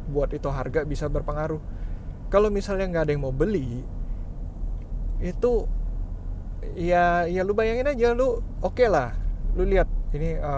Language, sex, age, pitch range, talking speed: Indonesian, male, 20-39, 125-165 Hz, 145 wpm